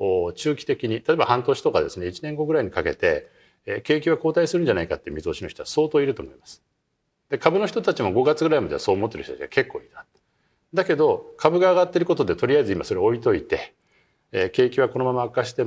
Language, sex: Japanese, male